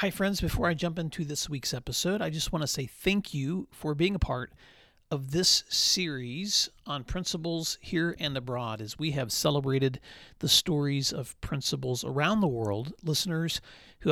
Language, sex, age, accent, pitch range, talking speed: English, male, 40-59, American, 130-165 Hz, 175 wpm